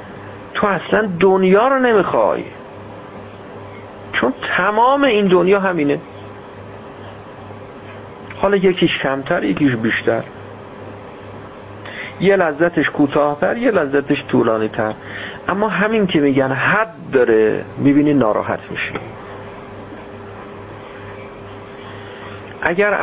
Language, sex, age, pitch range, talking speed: Persian, male, 50-69, 100-150 Hz, 85 wpm